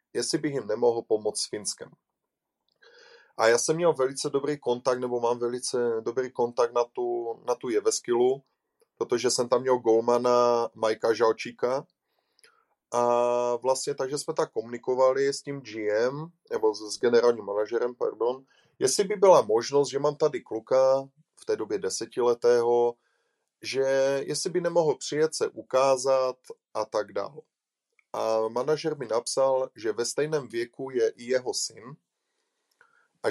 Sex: male